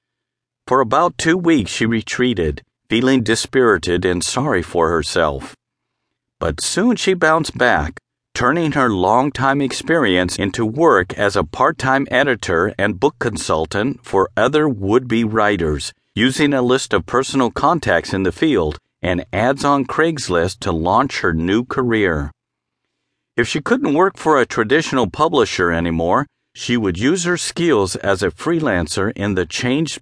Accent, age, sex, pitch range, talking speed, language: American, 50-69, male, 100-150 Hz, 145 wpm, English